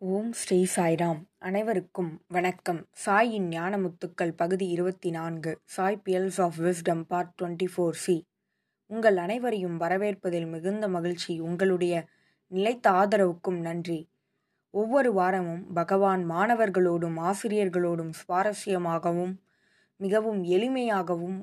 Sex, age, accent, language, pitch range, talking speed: female, 20-39, native, Tamil, 175-210 Hz, 90 wpm